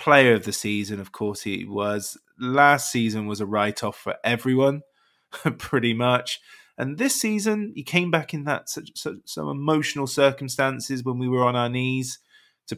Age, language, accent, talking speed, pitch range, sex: 20-39, English, British, 175 wpm, 110-145 Hz, male